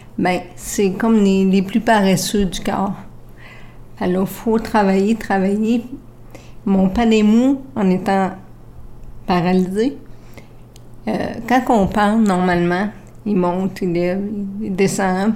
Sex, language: female, French